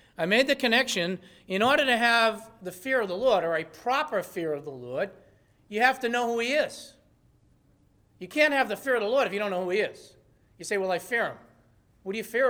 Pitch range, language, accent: 170-230 Hz, English, American